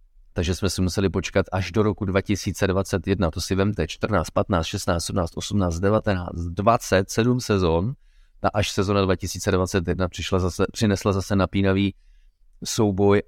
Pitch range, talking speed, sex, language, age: 90-105 Hz, 130 wpm, male, Czech, 30-49